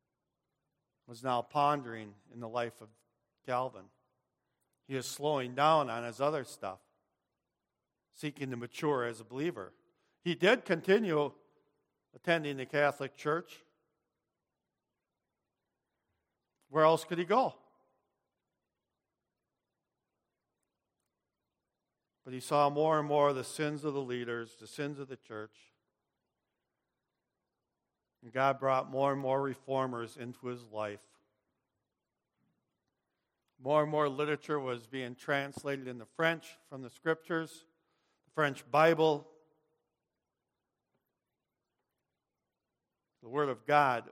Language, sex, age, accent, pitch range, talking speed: English, male, 50-69, American, 125-150 Hz, 110 wpm